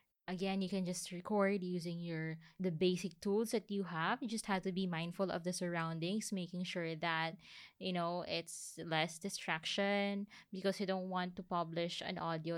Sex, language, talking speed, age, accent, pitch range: female, English, 180 wpm, 20-39, Filipino, 175-215 Hz